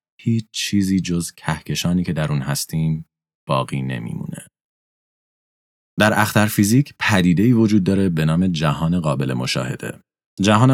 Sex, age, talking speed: male, 30-49, 130 wpm